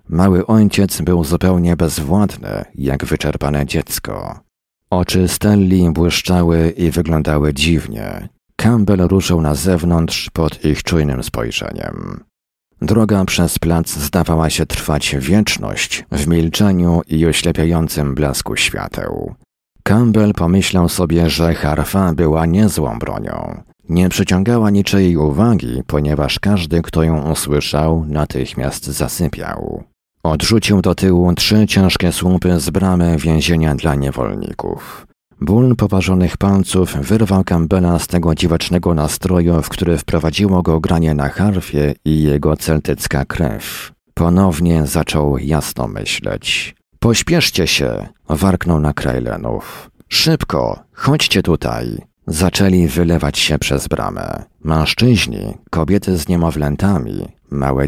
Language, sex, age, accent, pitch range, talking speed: Polish, male, 50-69, native, 75-95 Hz, 110 wpm